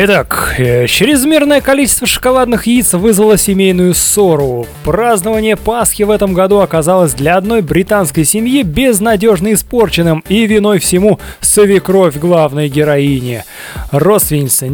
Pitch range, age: 185-240 Hz, 20-39